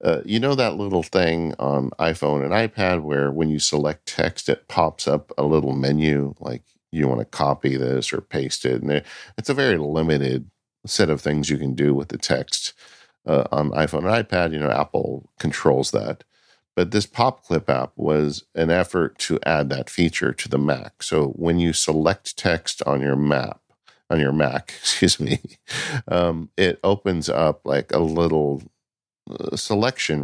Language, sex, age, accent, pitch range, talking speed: English, male, 50-69, American, 75-90 Hz, 175 wpm